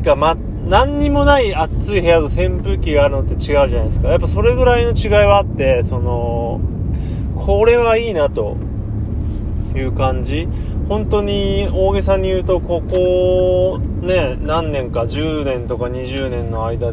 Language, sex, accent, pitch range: Japanese, male, native, 90-130 Hz